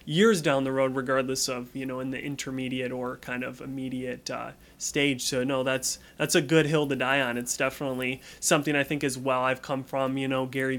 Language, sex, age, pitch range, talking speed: English, male, 20-39, 130-150 Hz, 220 wpm